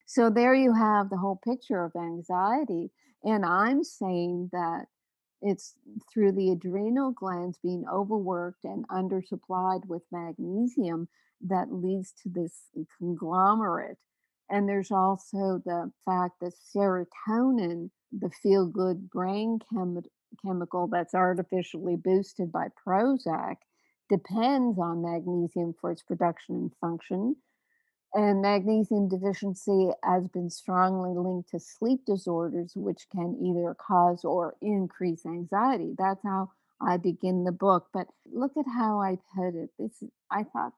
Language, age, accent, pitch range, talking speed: English, 50-69, American, 180-210 Hz, 130 wpm